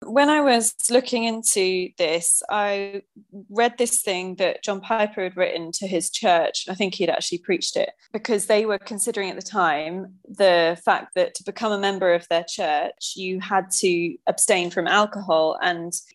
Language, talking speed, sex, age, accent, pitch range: English, 180 wpm, female, 20-39, British, 185-225 Hz